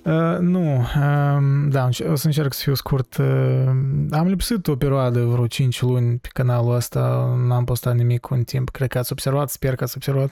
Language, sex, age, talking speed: Romanian, male, 20-39, 200 wpm